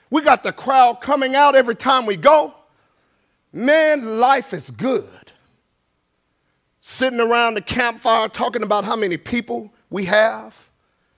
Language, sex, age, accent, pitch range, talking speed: English, male, 50-69, American, 195-290 Hz, 135 wpm